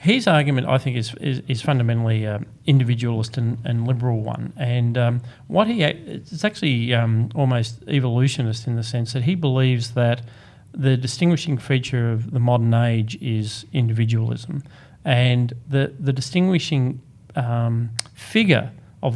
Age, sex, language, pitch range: 40-59, male, English, 120-145 Hz